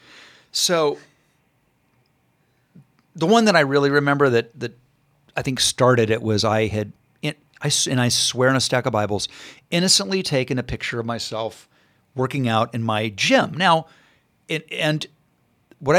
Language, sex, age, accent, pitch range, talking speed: English, male, 50-69, American, 115-155 Hz, 145 wpm